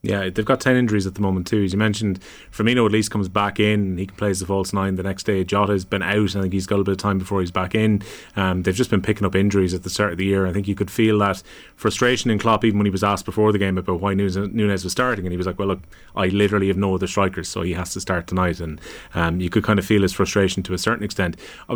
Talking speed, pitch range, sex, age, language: 305 wpm, 95-110 Hz, male, 30-49, English